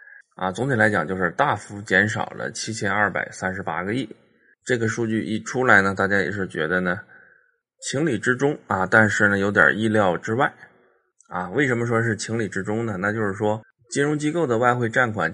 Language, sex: Chinese, male